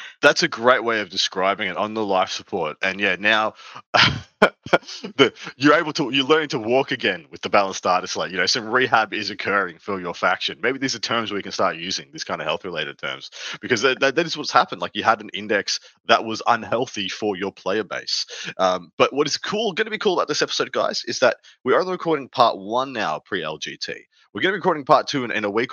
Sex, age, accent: male, 20-39, Australian